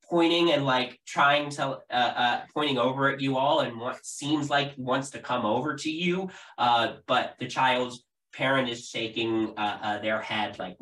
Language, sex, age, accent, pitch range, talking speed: English, male, 20-39, American, 115-150 Hz, 190 wpm